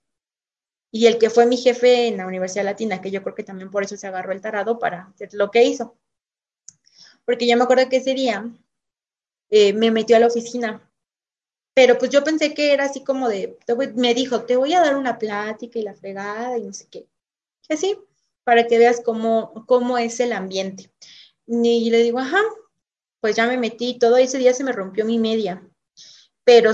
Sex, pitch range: female, 225-260 Hz